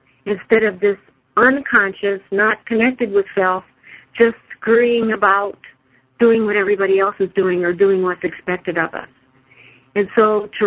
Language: English